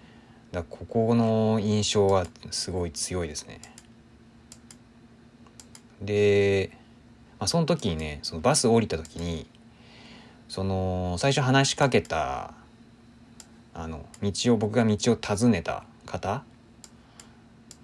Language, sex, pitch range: Japanese, male, 95-120 Hz